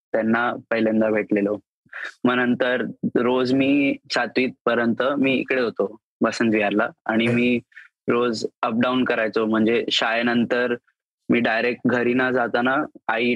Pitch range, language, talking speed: 110-120 Hz, Marathi, 120 wpm